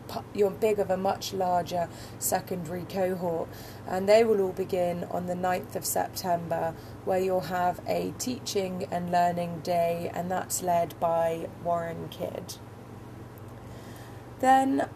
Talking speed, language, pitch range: 130 wpm, English, 130-200 Hz